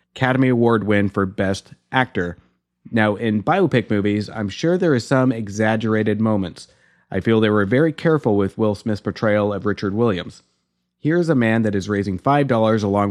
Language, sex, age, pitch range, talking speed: English, male, 30-49, 100-130 Hz, 180 wpm